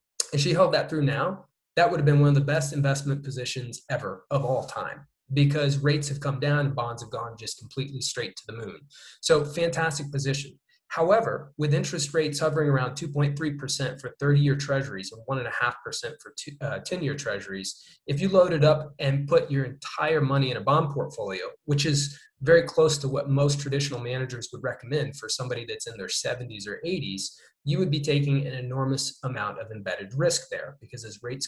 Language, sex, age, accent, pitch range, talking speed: English, male, 20-39, American, 130-155 Hz, 195 wpm